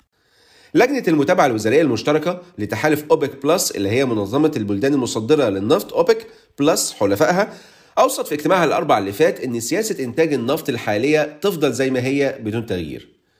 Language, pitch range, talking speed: Arabic, 125-180 Hz, 150 wpm